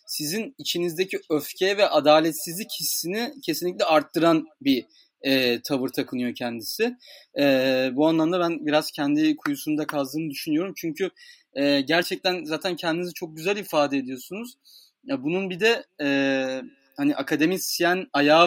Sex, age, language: male, 30-49, Turkish